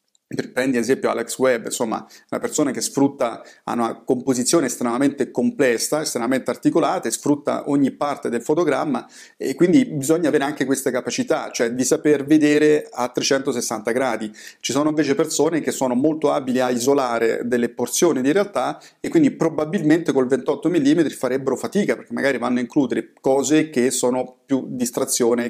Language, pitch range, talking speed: Italian, 125-170 Hz, 160 wpm